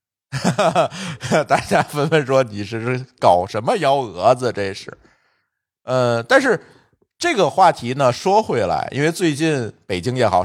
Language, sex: Chinese, male